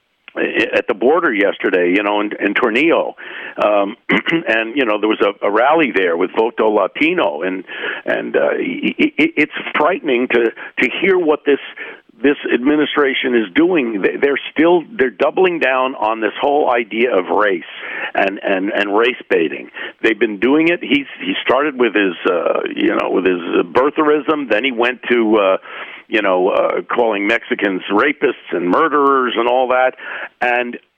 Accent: American